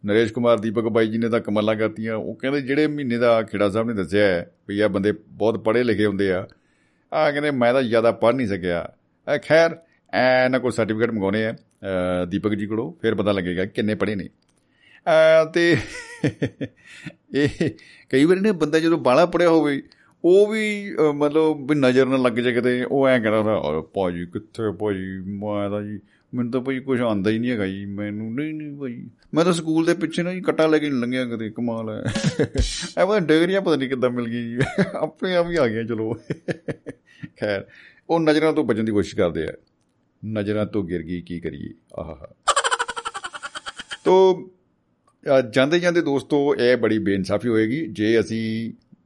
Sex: male